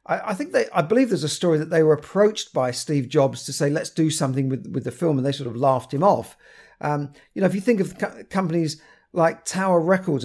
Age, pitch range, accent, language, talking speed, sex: 50-69, 140-170 Hz, British, English, 250 wpm, male